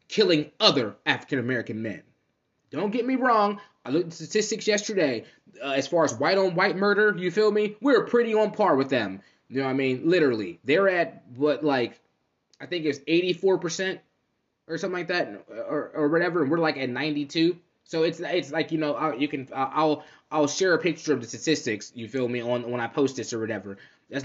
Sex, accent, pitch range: male, American, 140-190 Hz